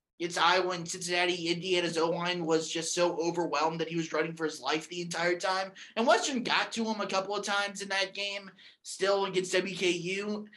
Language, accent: English, American